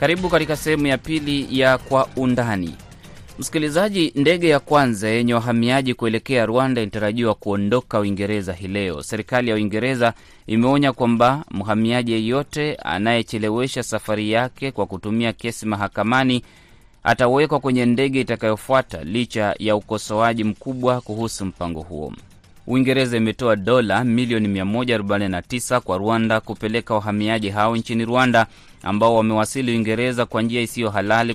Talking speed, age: 120 wpm, 30-49